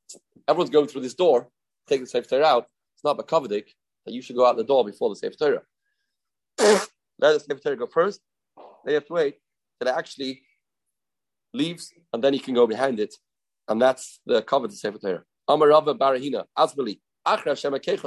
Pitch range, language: 130-205 Hz, English